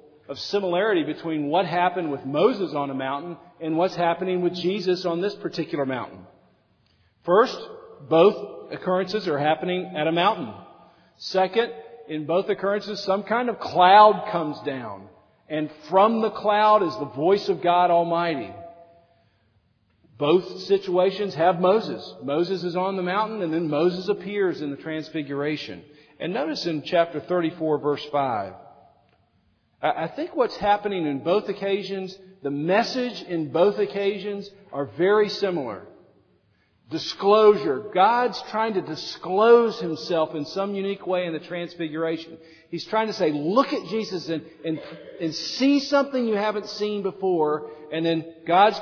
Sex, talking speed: male, 145 wpm